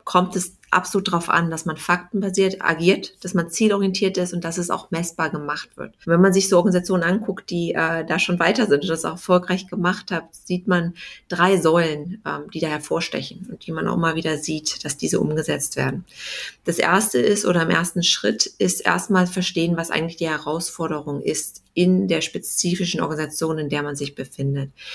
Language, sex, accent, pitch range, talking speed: English, female, German, 165-185 Hz, 195 wpm